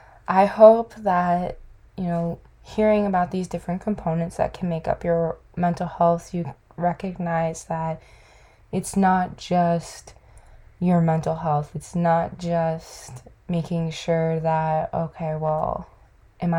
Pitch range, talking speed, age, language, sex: 160-180 Hz, 125 wpm, 20-39, English, female